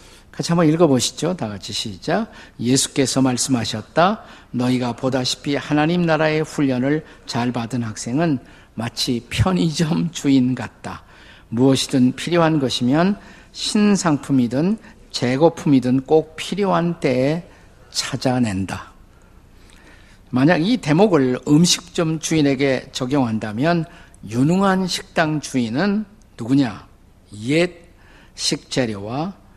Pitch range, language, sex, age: 105-150 Hz, Korean, male, 50-69